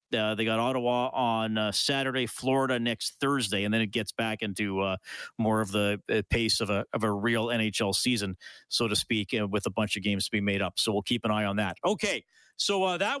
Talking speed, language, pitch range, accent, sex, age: 235 wpm, English, 130-185 Hz, American, male, 40-59